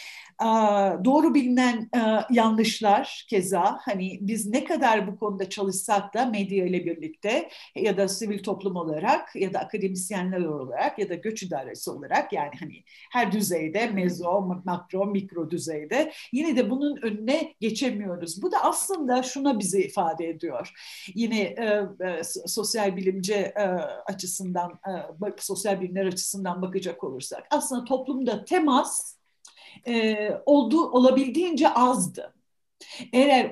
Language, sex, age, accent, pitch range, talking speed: Turkish, female, 50-69, native, 195-275 Hz, 130 wpm